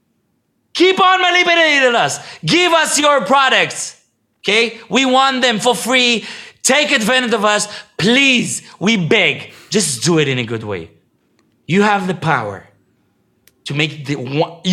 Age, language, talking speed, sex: 30-49, English, 145 wpm, male